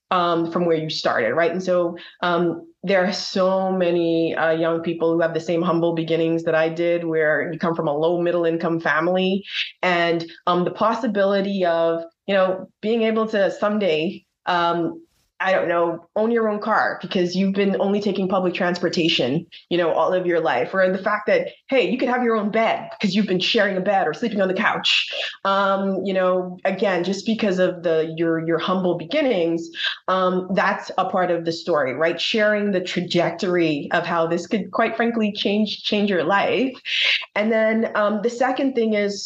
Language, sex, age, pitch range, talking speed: English, female, 20-39, 170-210 Hz, 195 wpm